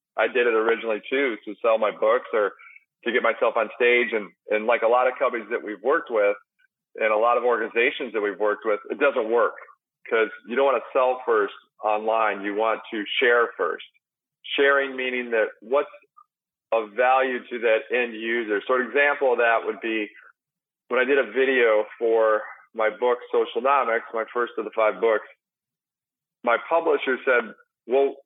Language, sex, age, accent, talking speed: English, male, 40-59, American, 185 wpm